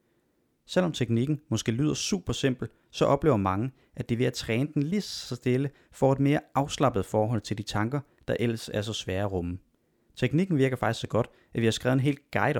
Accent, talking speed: native, 215 wpm